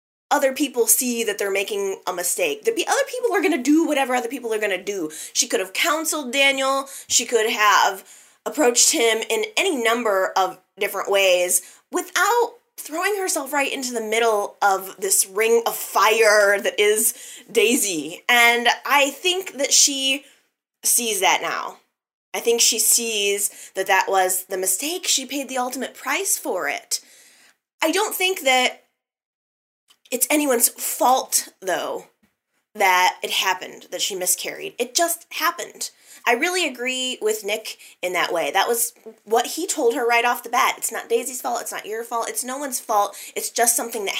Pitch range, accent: 220-335 Hz, American